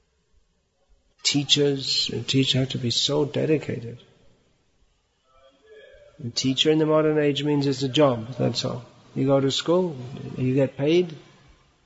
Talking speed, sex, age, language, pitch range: 135 wpm, male, 60-79, English, 125-145 Hz